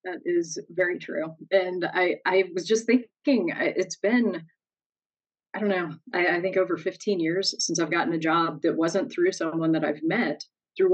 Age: 30-49